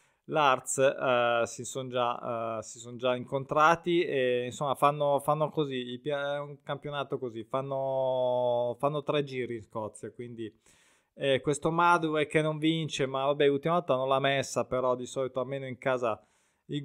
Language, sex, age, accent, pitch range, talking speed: Italian, male, 20-39, native, 125-150 Hz, 160 wpm